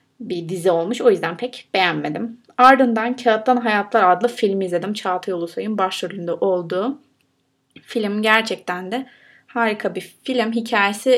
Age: 30-49